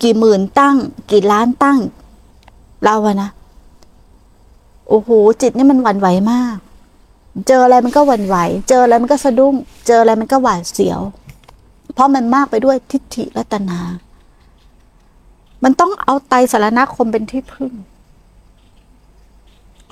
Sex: female